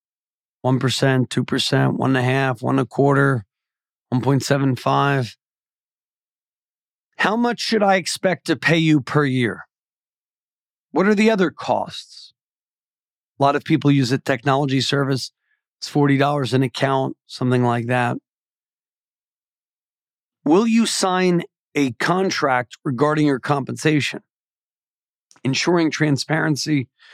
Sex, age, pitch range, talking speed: male, 40-59, 135-175 Hz, 110 wpm